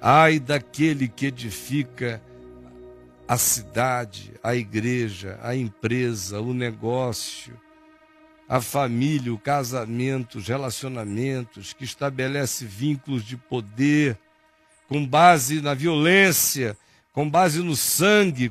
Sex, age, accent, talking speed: male, 60-79, Brazilian, 100 wpm